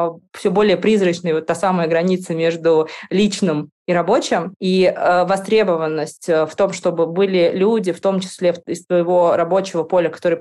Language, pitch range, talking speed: Russian, 170-195 Hz, 155 wpm